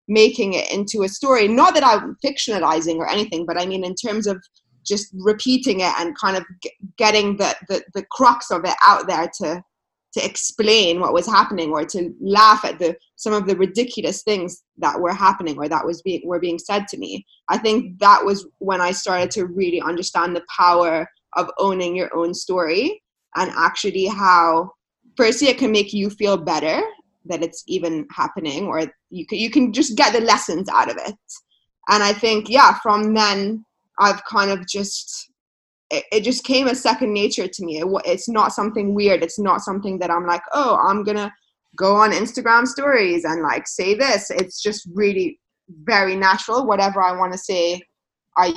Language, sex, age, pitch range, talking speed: English, female, 20-39, 180-225 Hz, 190 wpm